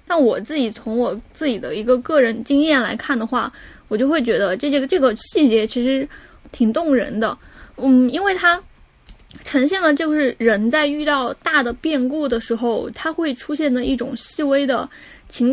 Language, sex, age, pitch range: Chinese, female, 10-29, 235-285 Hz